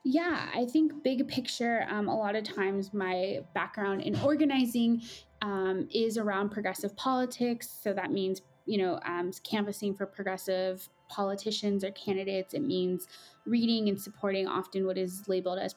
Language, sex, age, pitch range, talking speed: English, female, 20-39, 190-215 Hz, 155 wpm